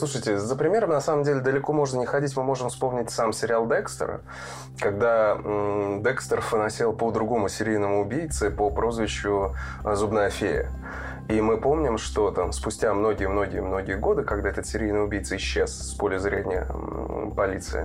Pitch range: 105-130 Hz